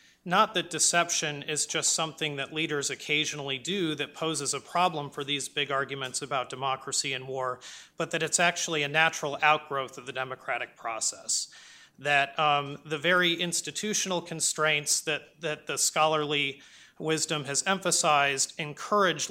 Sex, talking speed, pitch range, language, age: male, 145 wpm, 135-160 Hz, English, 30-49